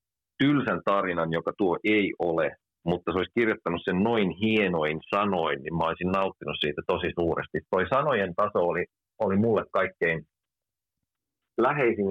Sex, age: male, 40-59